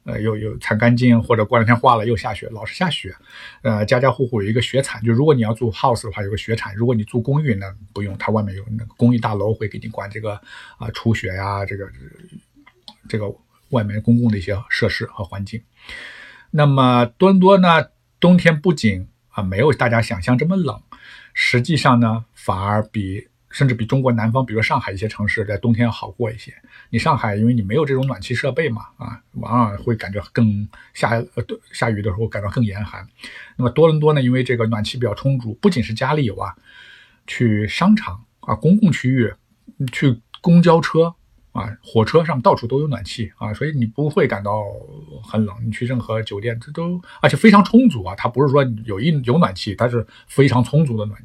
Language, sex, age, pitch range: Chinese, male, 50-69, 110-130 Hz